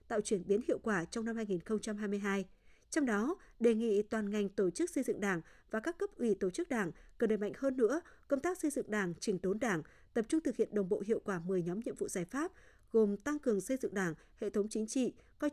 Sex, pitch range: female, 200-280 Hz